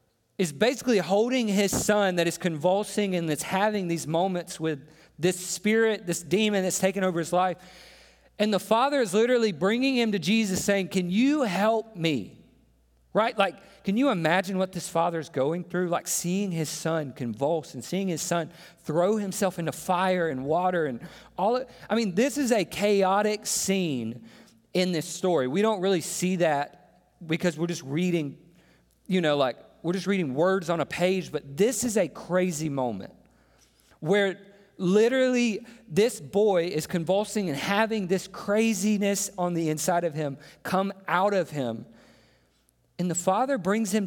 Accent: American